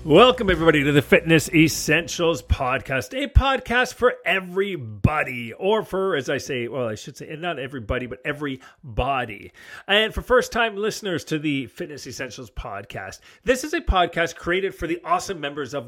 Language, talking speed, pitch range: English, 165 wpm, 155-210 Hz